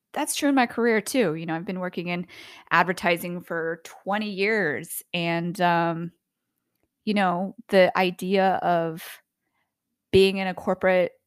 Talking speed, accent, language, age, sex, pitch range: 145 wpm, American, English, 20-39, female, 170-225 Hz